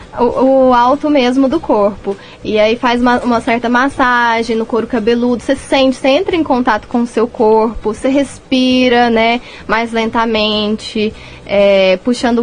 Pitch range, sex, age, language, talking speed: 220-275 Hz, female, 10-29, Portuguese, 160 wpm